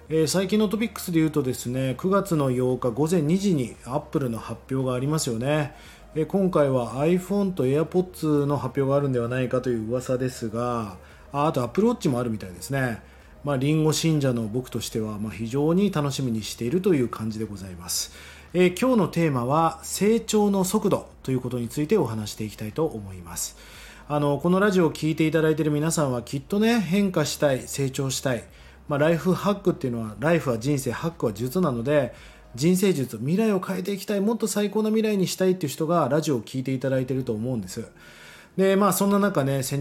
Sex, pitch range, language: male, 125-185 Hz, Japanese